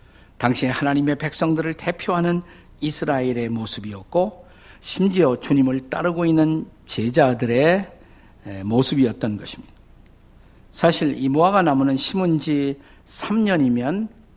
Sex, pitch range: male, 105-160 Hz